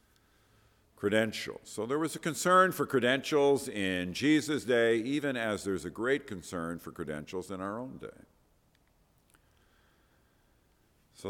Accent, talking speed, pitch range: American, 125 wpm, 100-130 Hz